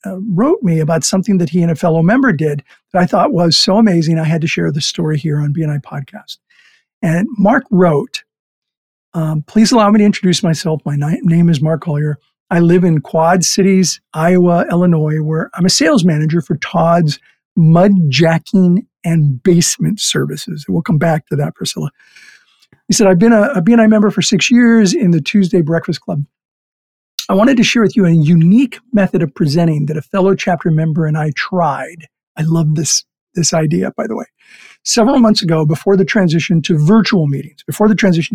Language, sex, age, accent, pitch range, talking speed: English, male, 50-69, American, 160-195 Hz, 190 wpm